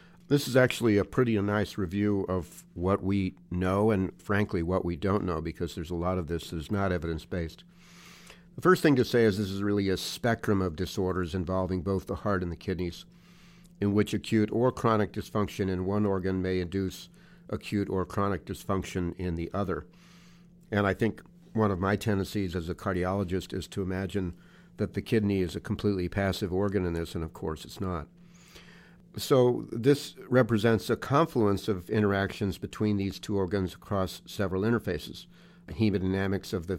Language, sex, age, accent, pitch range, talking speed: English, male, 50-69, American, 95-110 Hz, 180 wpm